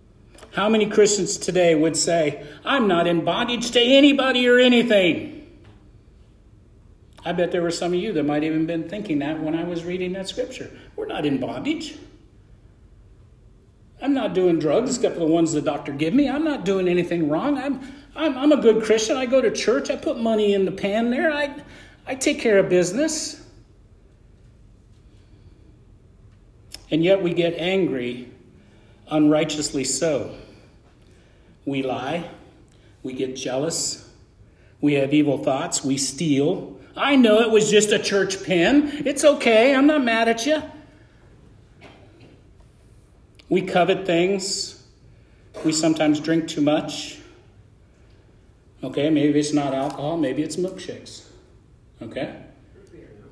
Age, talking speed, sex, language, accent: 50-69, 145 wpm, male, English, American